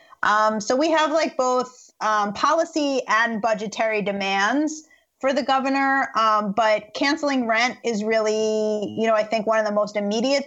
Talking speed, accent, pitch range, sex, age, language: 165 wpm, American, 210-265 Hz, female, 30-49, English